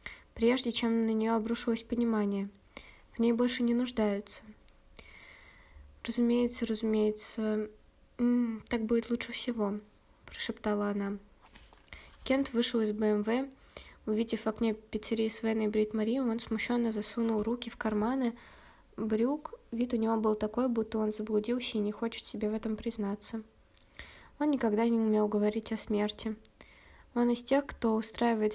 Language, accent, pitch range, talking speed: Russian, native, 215-235 Hz, 135 wpm